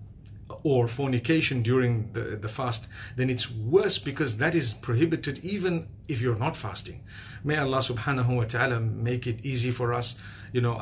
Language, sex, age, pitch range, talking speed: English, male, 50-69, 115-135 Hz, 165 wpm